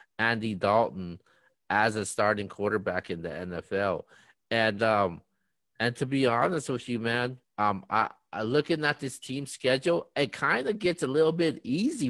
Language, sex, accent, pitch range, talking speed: English, male, American, 115-150 Hz, 170 wpm